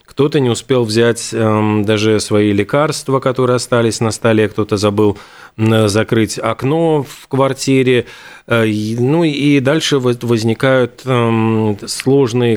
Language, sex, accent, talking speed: Russian, male, native, 105 wpm